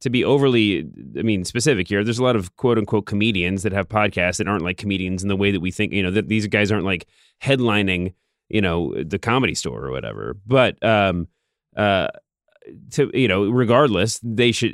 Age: 30-49